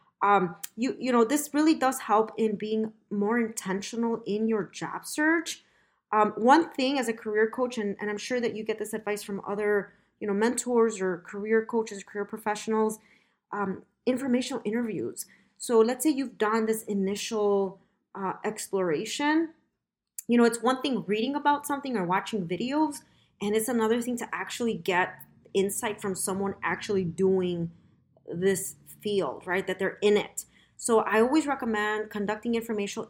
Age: 30-49